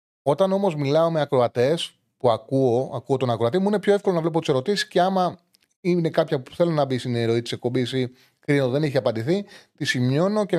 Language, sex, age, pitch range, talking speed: Greek, male, 30-49, 120-155 Hz, 205 wpm